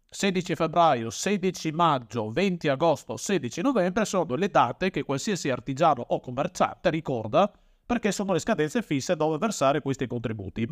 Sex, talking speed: male, 145 wpm